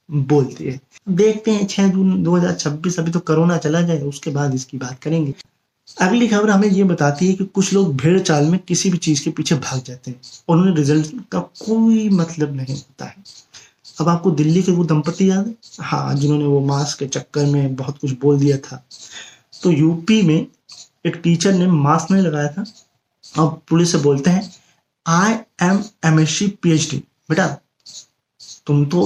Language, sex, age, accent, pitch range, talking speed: Hindi, male, 20-39, native, 145-180 Hz, 120 wpm